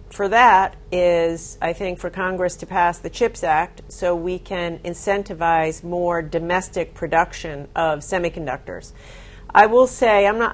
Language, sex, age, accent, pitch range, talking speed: English, female, 40-59, American, 170-195 Hz, 150 wpm